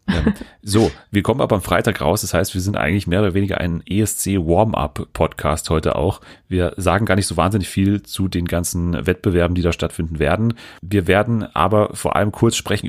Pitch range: 85-110 Hz